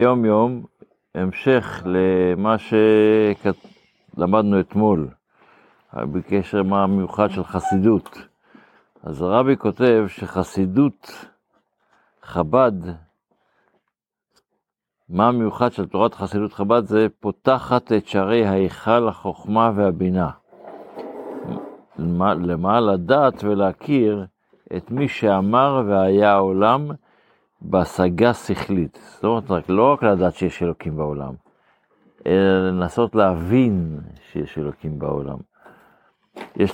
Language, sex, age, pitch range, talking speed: Hebrew, male, 60-79, 90-110 Hz, 90 wpm